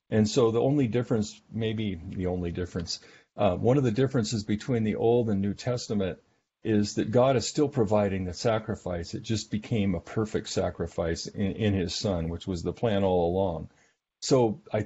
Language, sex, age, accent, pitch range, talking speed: English, male, 50-69, American, 95-115 Hz, 185 wpm